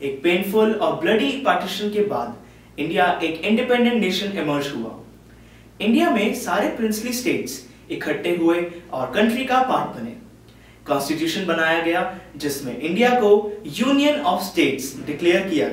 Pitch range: 160-240 Hz